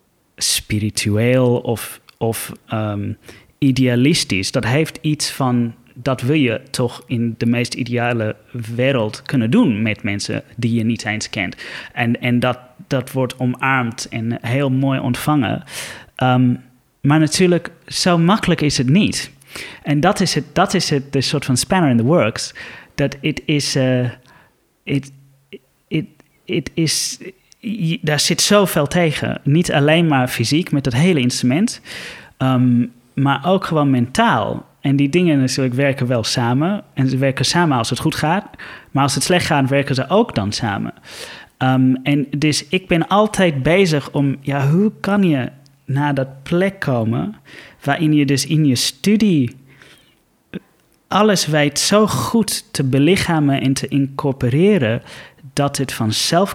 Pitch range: 125-155 Hz